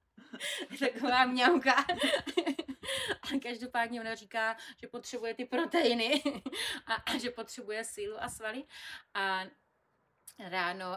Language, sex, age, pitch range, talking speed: Slovak, female, 30-49, 190-220 Hz, 100 wpm